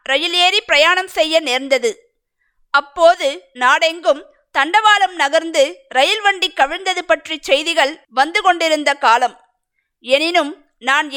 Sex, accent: female, native